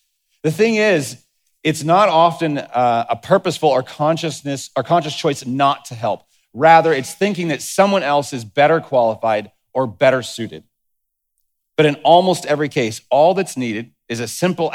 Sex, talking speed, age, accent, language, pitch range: male, 165 wpm, 40-59, American, English, 120-160 Hz